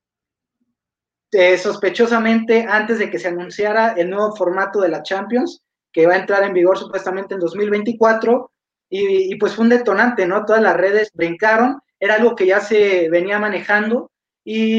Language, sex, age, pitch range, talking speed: Spanish, male, 20-39, 180-225 Hz, 165 wpm